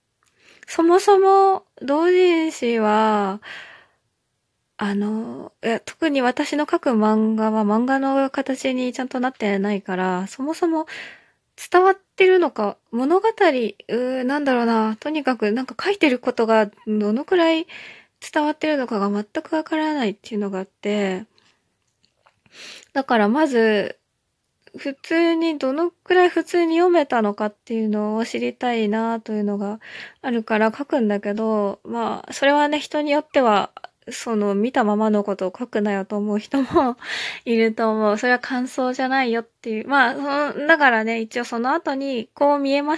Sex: female